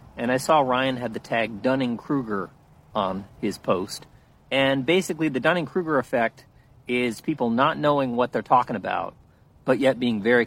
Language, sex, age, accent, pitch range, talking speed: English, male, 40-59, American, 110-140 Hz, 160 wpm